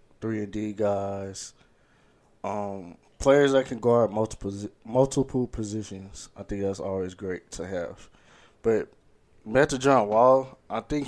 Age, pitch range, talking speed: 20-39, 100-125 Hz, 135 wpm